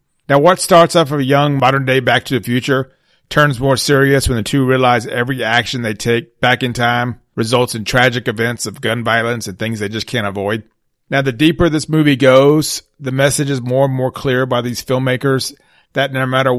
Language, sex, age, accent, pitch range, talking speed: English, male, 40-59, American, 115-145 Hz, 215 wpm